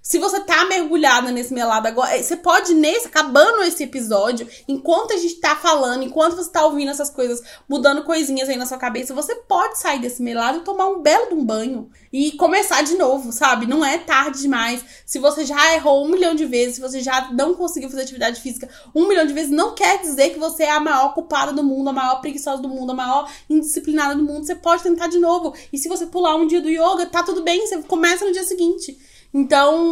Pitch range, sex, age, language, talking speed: 255-330 Hz, female, 20-39, Portuguese, 230 wpm